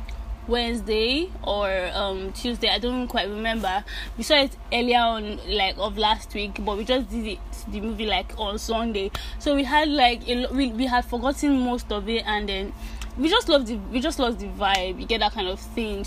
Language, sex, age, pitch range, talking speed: English, female, 20-39, 210-255 Hz, 210 wpm